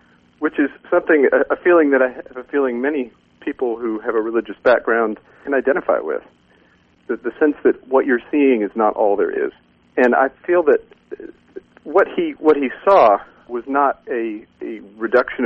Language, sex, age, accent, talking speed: English, male, 40-59, American, 180 wpm